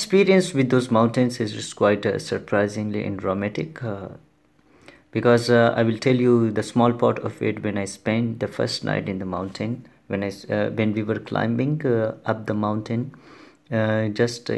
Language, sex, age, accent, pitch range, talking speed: French, male, 30-49, Indian, 105-120 Hz, 175 wpm